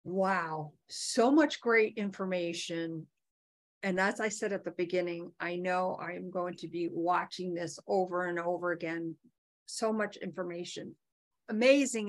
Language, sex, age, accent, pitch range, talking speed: English, female, 50-69, American, 175-210 Hz, 140 wpm